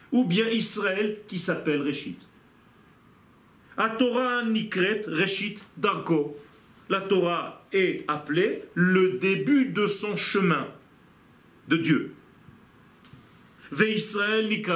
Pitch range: 170-235 Hz